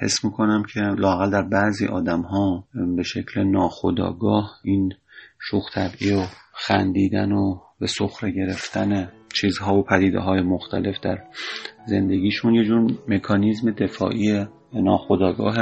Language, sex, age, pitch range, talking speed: Persian, male, 30-49, 95-105 Hz, 120 wpm